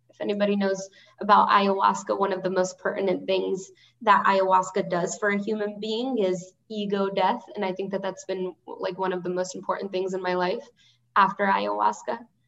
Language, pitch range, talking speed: English, 185-210 Hz, 190 wpm